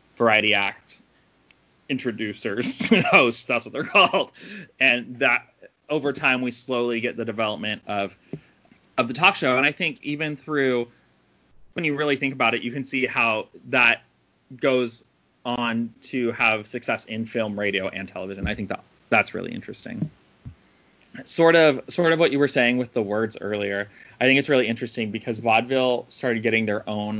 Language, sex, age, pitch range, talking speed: English, male, 20-39, 105-135 Hz, 170 wpm